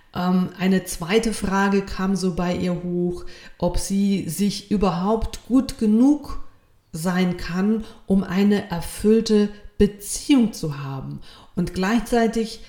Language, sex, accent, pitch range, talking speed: German, female, German, 180-210 Hz, 115 wpm